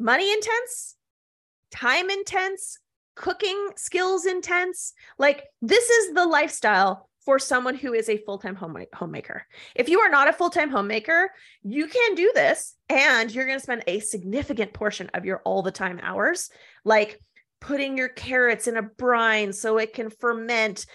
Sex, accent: female, American